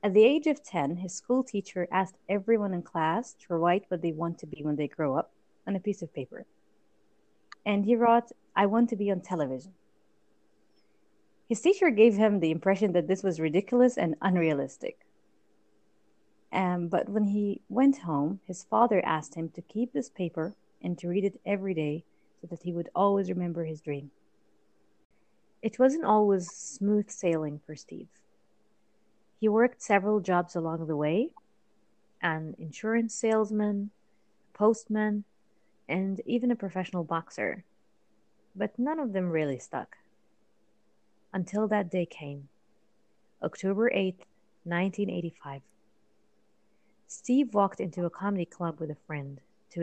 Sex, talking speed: female, 150 wpm